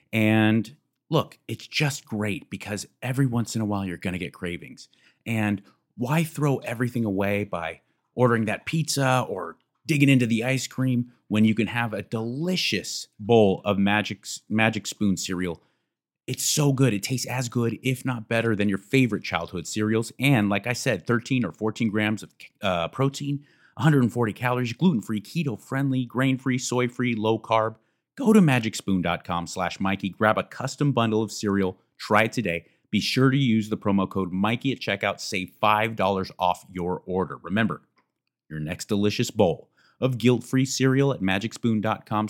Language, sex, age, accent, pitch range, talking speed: English, male, 30-49, American, 100-130 Hz, 165 wpm